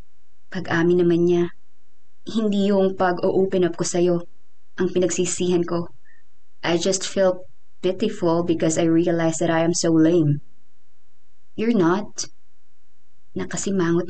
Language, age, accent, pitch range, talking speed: Filipino, 20-39, native, 180-205 Hz, 115 wpm